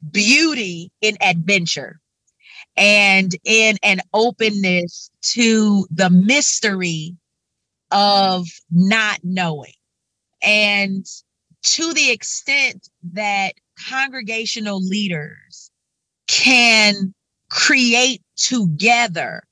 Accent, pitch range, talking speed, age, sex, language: American, 180-230 Hz, 70 wpm, 30-49, female, English